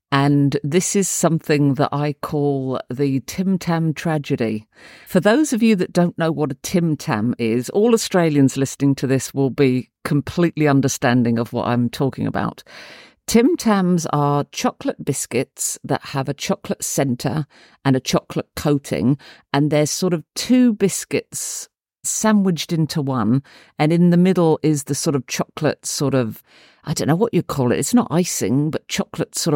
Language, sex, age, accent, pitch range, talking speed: English, female, 50-69, British, 135-170 Hz, 170 wpm